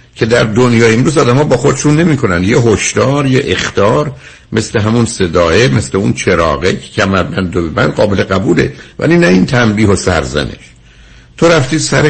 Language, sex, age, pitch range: Persian, male, 60-79, 85-125 Hz